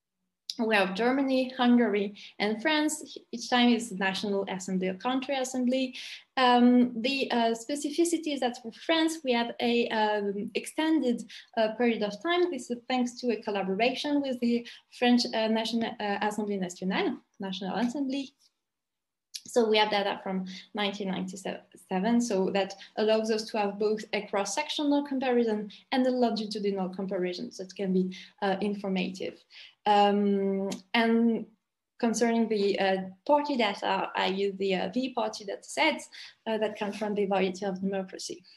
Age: 20-39